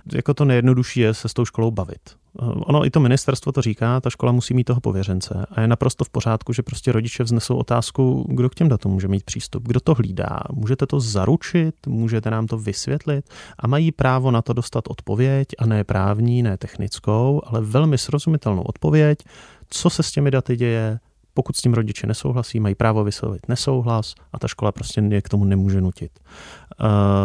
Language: Czech